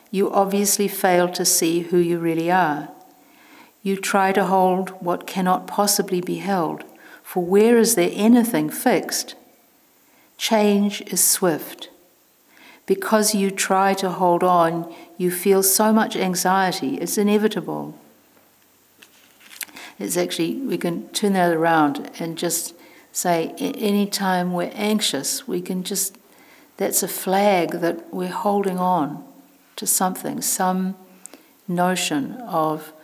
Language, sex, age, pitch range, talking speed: English, female, 60-79, 170-220 Hz, 125 wpm